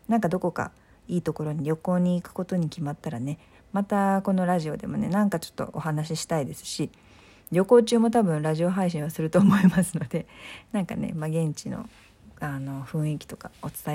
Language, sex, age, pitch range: Japanese, female, 40-59, 155-215 Hz